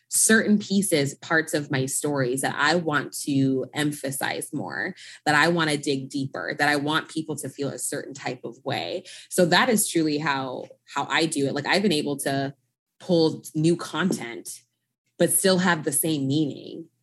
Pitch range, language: 145-195 Hz, English